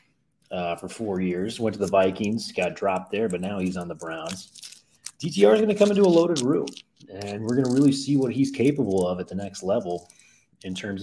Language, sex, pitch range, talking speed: English, male, 95-120 Hz, 220 wpm